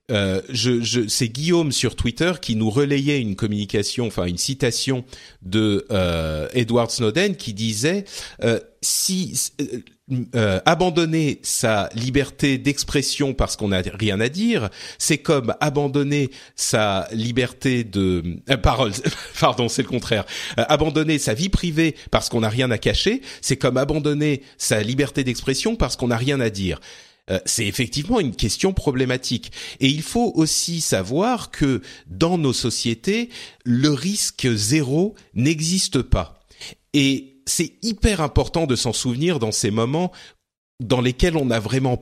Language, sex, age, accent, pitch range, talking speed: French, male, 40-59, French, 115-155 Hz, 150 wpm